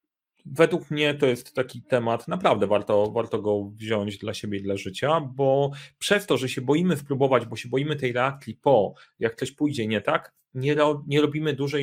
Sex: male